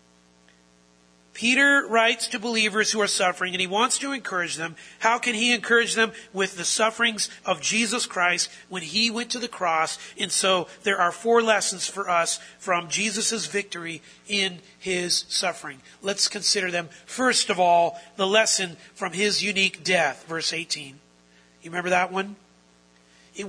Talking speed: 160 wpm